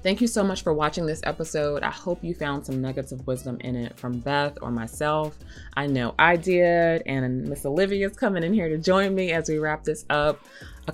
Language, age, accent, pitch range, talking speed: English, 20-39, American, 125-165 Hz, 230 wpm